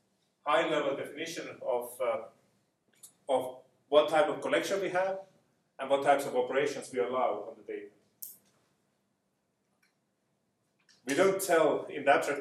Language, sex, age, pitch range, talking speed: English, male, 30-49, 135-170 Hz, 135 wpm